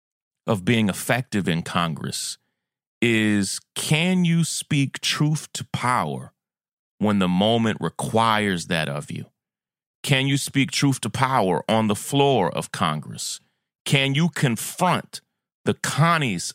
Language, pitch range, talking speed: English, 100-130 Hz, 125 wpm